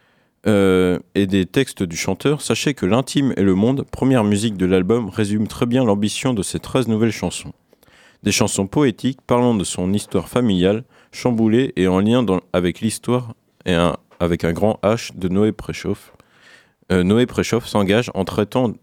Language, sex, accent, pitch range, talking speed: French, male, French, 95-120 Hz, 175 wpm